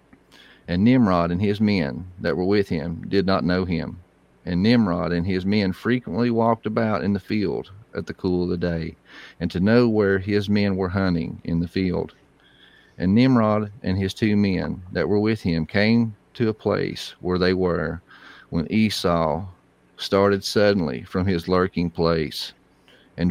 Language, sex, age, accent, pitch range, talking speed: English, male, 40-59, American, 85-100 Hz, 170 wpm